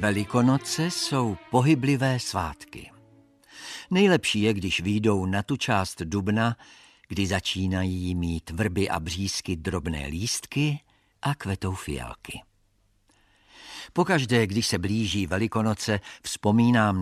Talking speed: 100 wpm